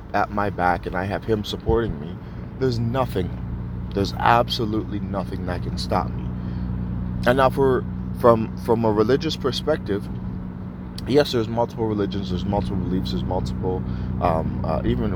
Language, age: English, 20-39